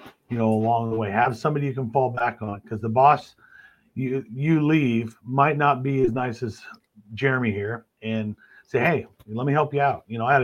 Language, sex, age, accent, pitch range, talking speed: English, male, 40-59, American, 110-140 Hz, 220 wpm